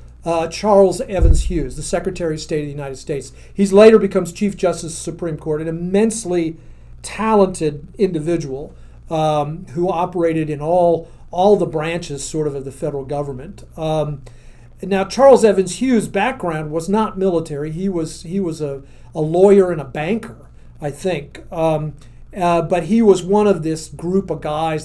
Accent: American